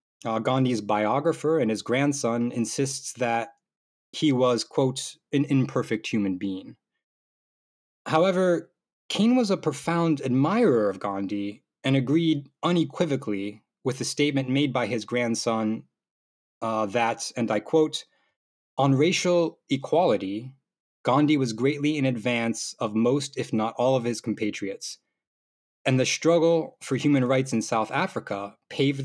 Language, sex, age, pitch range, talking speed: English, male, 20-39, 115-145 Hz, 130 wpm